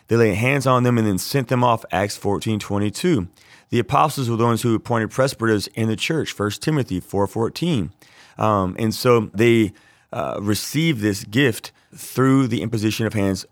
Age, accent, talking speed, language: 30-49, American, 180 wpm, English